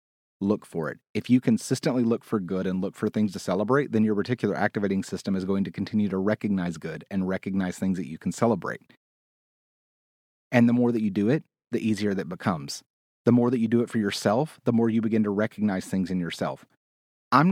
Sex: male